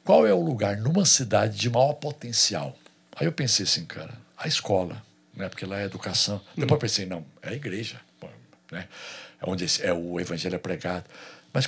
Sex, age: male, 60-79